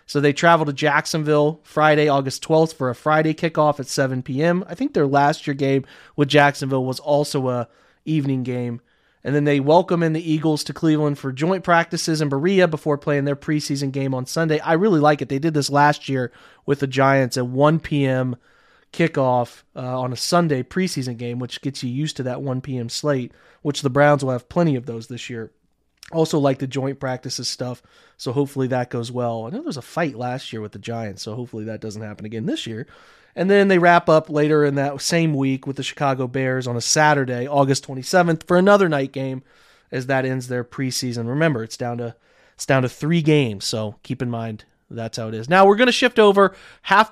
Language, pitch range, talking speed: English, 130-155 Hz, 215 wpm